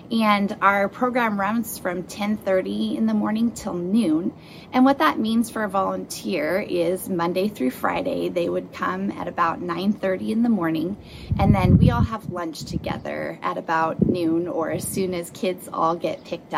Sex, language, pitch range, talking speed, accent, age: female, English, 170-215 Hz, 175 wpm, American, 20-39